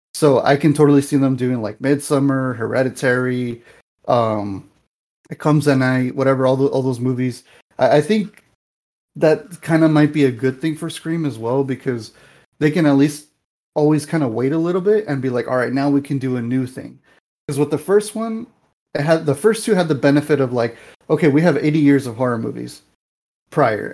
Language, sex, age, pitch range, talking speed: English, male, 30-49, 125-150 Hz, 210 wpm